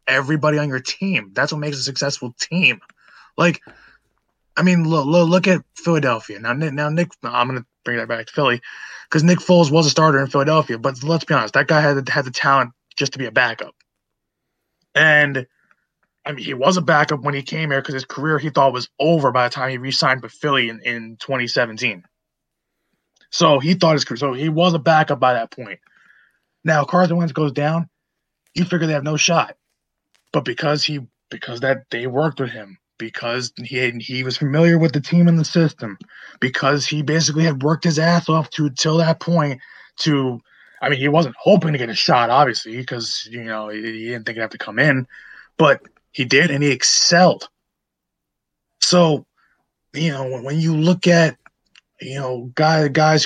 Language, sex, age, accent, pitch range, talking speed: English, male, 20-39, American, 125-160 Hz, 200 wpm